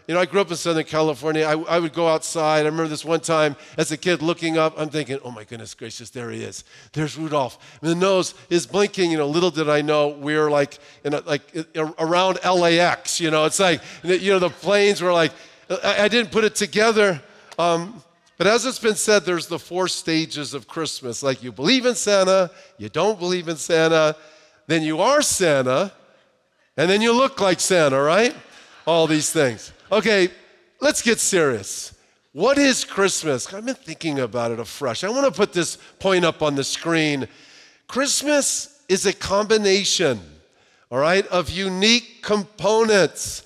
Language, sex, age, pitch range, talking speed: English, male, 50-69, 155-200 Hz, 190 wpm